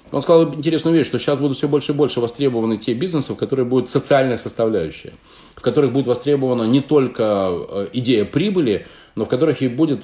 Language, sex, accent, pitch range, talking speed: Russian, male, native, 95-130 Hz, 190 wpm